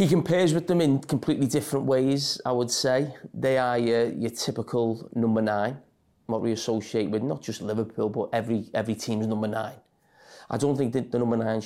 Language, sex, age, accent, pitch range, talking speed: English, male, 30-49, British, 110-130 Hz, 195 wpm